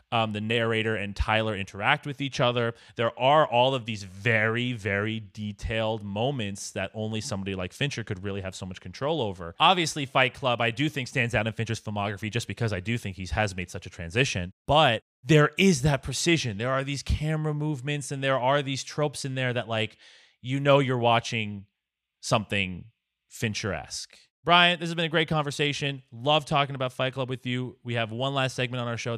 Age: 30-49